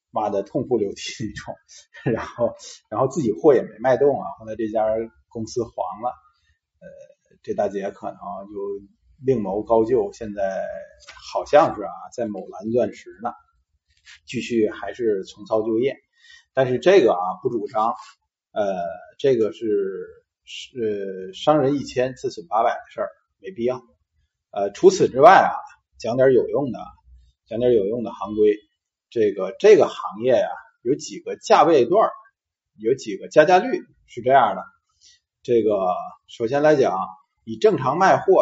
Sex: male